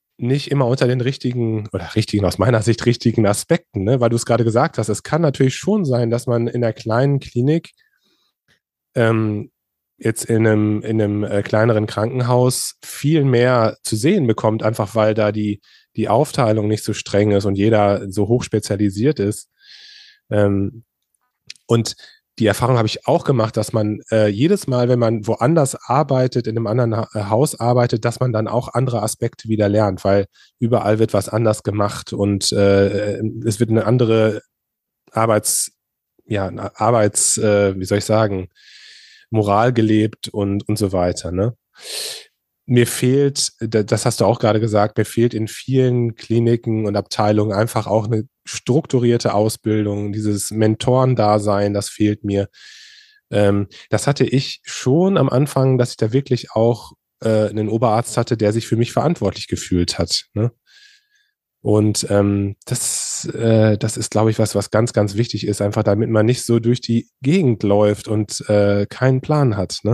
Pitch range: 105-125 Hz